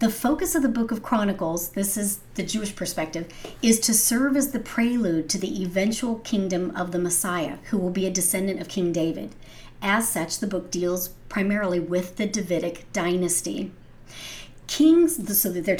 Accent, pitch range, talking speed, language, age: American, 175-230 Hz, 175 wpm, English, 40-59